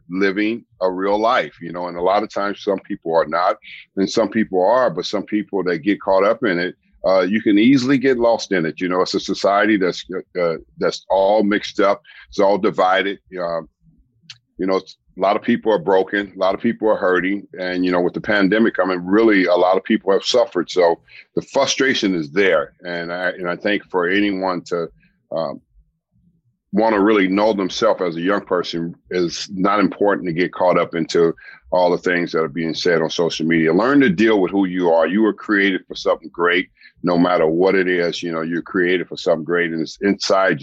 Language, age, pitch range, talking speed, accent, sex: English, 50-69, 85-105 Hz, 220 wpm, American, male